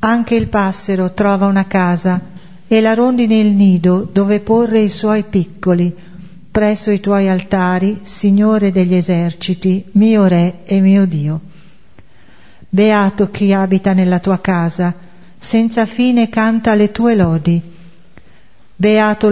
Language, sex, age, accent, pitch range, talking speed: Italian, female, 50-69, native, 180-215 Hz, 125 wpm